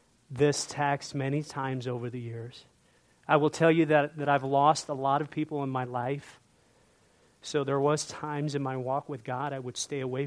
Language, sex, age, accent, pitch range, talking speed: English, male, 40-59, American, 135-165 Hz, 205 wpm